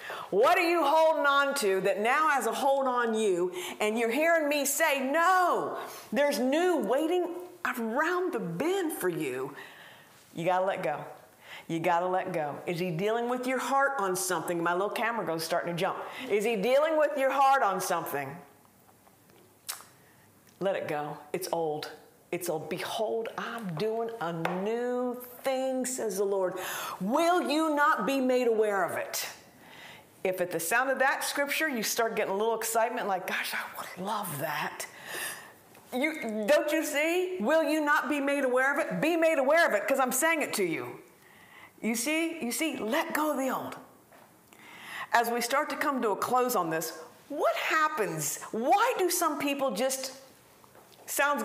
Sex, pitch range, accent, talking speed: female, 195-300 Hz, American, 180 wpm